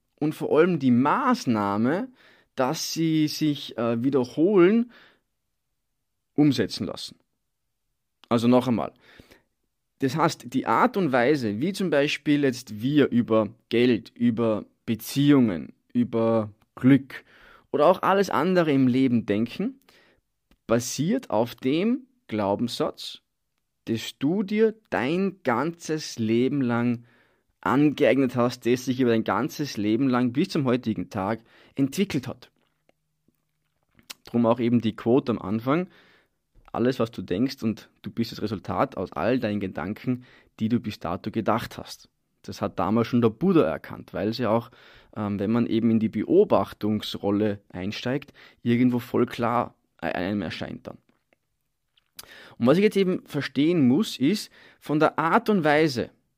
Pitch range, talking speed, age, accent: 110-150 Hz, 135 wpm, 20-39, German